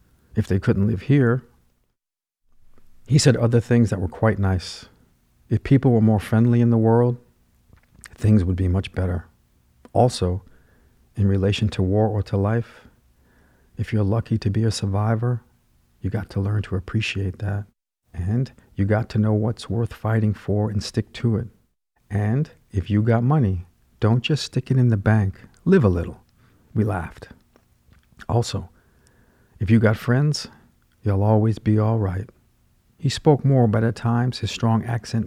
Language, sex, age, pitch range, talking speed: French, male, 50-69, 95-115 Hz, 165 wpm